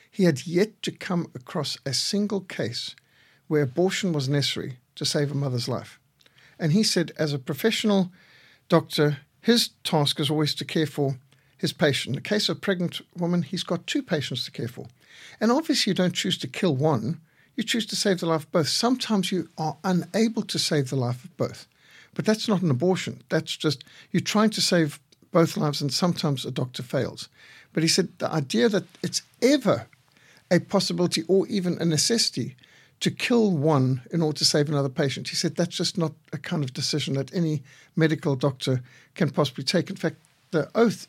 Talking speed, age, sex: 195 wpm, 50-69, male